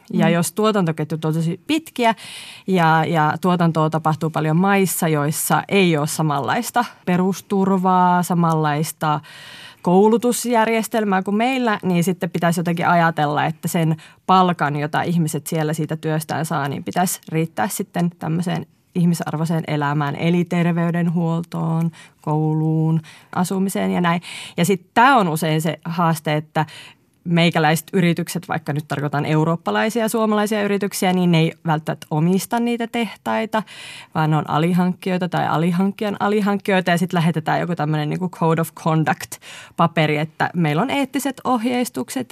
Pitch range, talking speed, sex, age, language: 160-195 Hz, 130 wpm, female, 30-49, Finnish